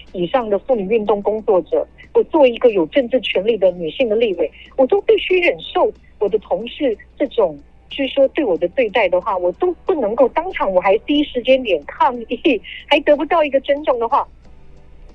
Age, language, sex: 50-69, Chinese, female